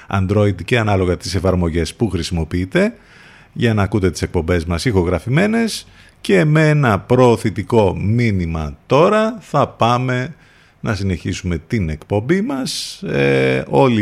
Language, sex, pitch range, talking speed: Greek, male, 85-120 Hz, 125 wpm